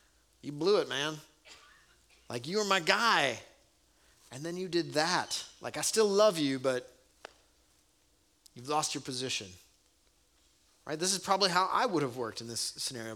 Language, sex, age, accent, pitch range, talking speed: English, male, 30-49, American, 110-160 Hz, 165 wpm